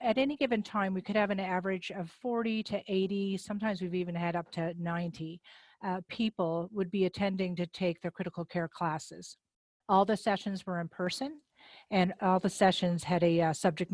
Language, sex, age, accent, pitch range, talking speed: English, female, 50-69, American, 175-210 Hz, 195 wpm